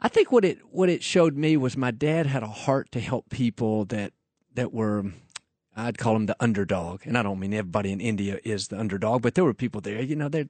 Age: 50-69